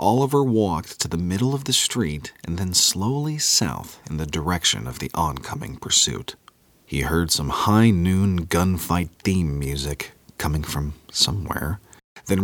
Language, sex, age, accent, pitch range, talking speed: English, male, 40-59, American, 75-115 Hz, 150 wpm